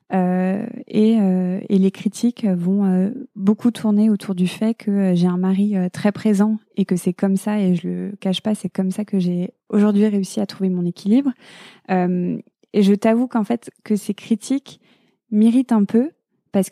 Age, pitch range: 20-39, 190-220 Hz